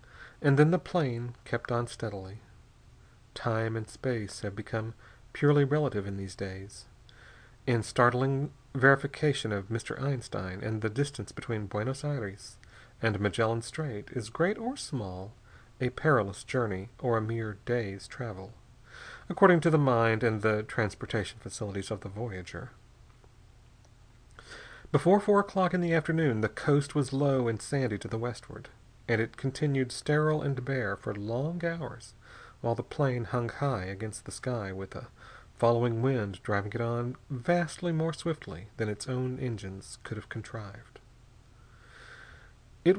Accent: American